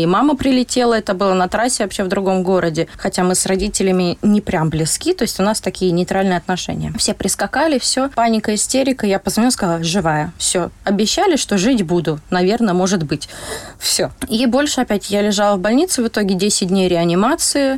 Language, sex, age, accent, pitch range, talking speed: Russian, female, 20-39, native, 180-225 Hz, 185 wpm